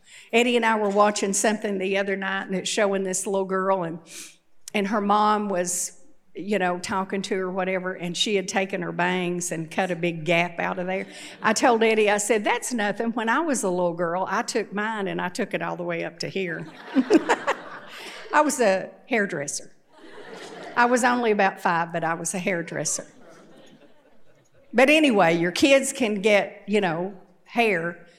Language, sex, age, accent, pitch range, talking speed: English, female, 60-79, American, 175-220 Hz, 190 wpm